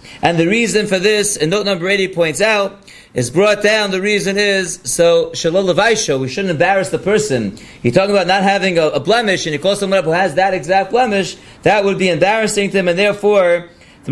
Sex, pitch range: male, 180-215 Hz